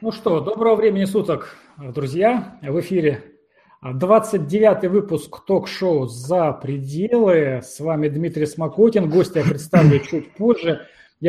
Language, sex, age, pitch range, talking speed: Russian, male, 30-49, 145-180 Hz, 120 wpm